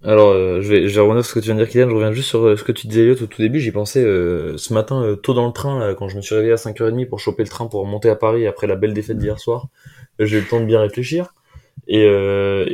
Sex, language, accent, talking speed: male, French, French, 330 wpm